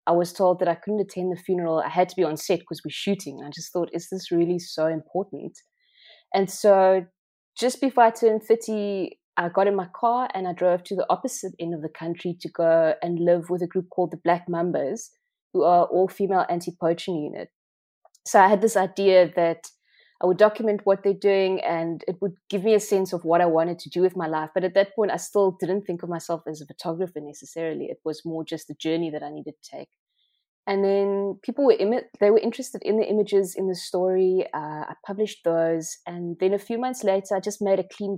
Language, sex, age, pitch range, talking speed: English, female, 20-39, 165-195 Hz, 230 wpm